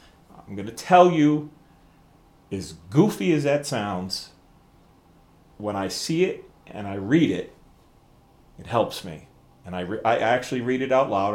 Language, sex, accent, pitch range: English, male, American, 90-140 Hz